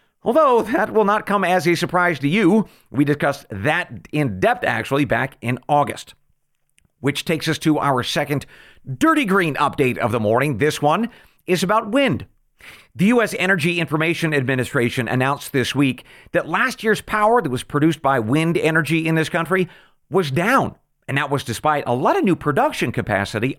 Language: English